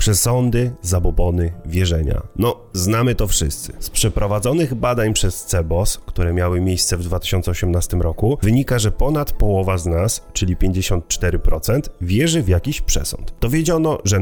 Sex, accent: male, native